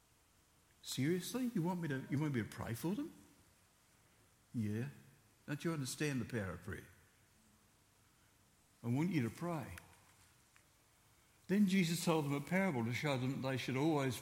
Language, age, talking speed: English, 60-79, 160 wpm